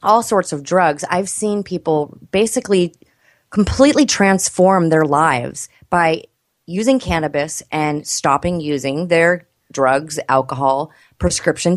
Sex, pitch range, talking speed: female, 150-190 Hz, 110 wpm